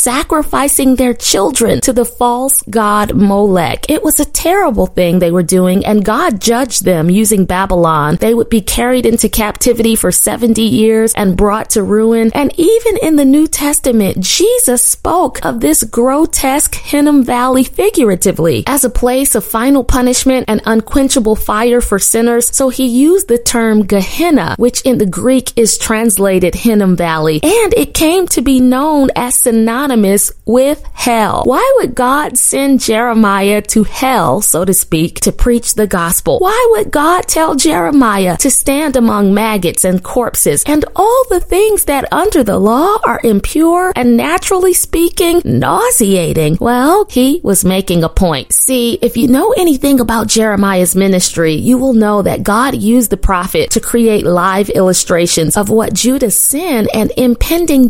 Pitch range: 205-285 Hz